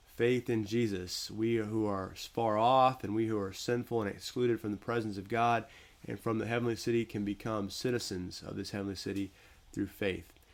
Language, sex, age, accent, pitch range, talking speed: English, male, 30-49, American, 100-120 Hz, 195 wpm